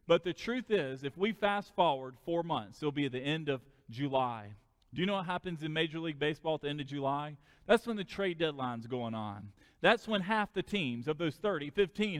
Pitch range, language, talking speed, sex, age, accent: 145-200 Hz, English, 225 wpm, male, 40-59, American